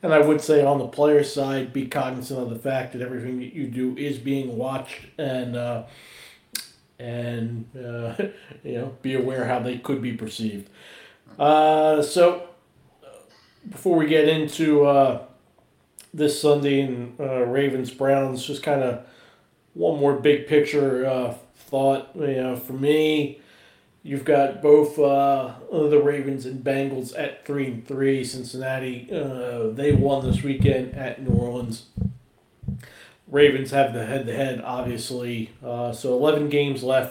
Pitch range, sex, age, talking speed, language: 125-145 Hz, male, 40-59, 145 wpm, English